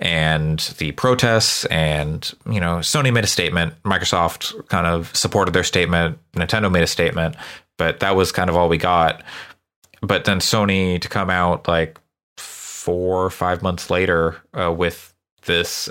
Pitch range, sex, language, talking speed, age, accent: 85-105 Hz, male, English, 160 wpm, 30-49, American